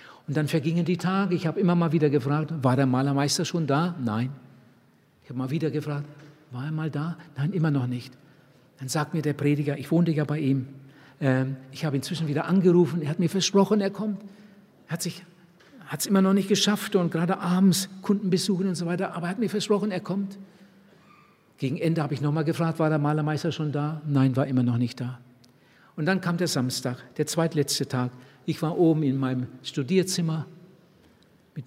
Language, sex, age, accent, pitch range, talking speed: German, male, 60-79, German, 145-195 Hz, 200 wpm